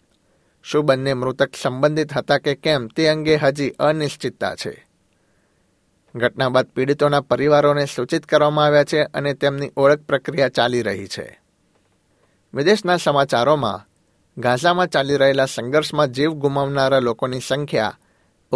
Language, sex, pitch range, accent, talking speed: Gujarati, male, 130-150 Hz, native, 120 wpm